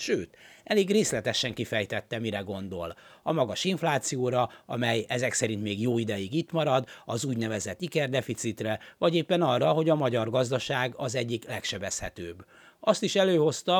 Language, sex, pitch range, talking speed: Hungarian, male, 115-160 Hz, 145 wpm